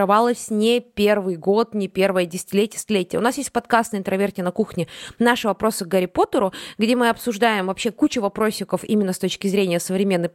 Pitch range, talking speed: 195-250 Hz, 175 wpm